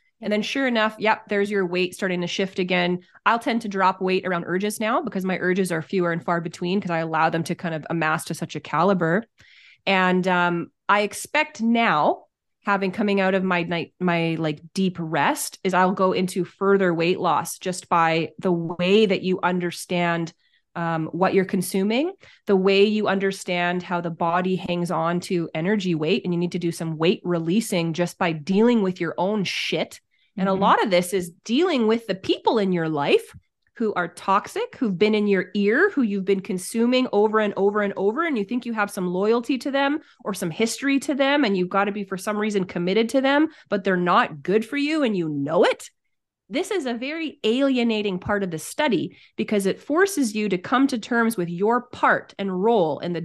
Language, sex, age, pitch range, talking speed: English, female, 20-39, 175-220 Hz, 215 wpm